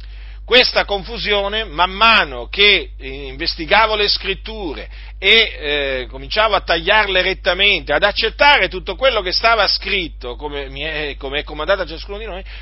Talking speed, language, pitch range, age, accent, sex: 140 wpm, Italian, 140-215 Hz, 40-59, native, male